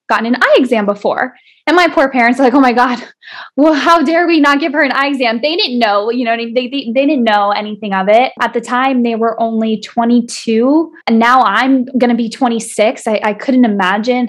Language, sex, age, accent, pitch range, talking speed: English, female, 10-29, American, 230-285 Hz, 230 wpm